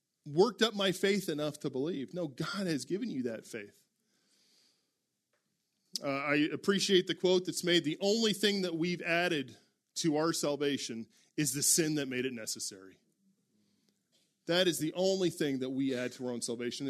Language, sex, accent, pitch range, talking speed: English, male, American, 140-195 Hz, 175 wpm